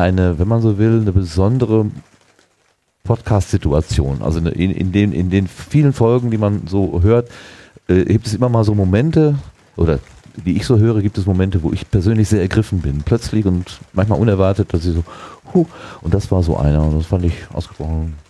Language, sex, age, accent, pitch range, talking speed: German, male, 40-59, German, 90-115 Hz, 195 wpm